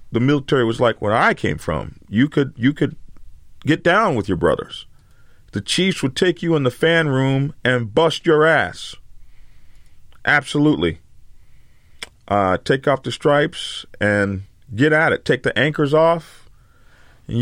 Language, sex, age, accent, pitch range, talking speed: English, male, 40-59, American, 110-150 Hz, 155 wpm